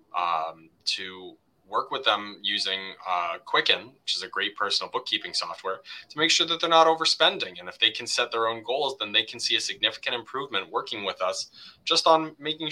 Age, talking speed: 20-39, 205 wpm